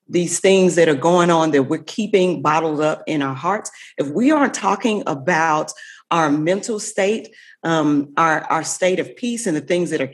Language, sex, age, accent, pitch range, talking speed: English, female, 40-59, American, 155-225 Hz, 195 wpm